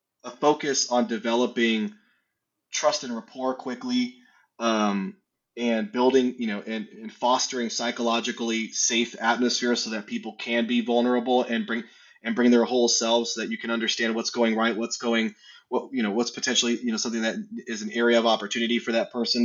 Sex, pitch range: male, 115-130 Hz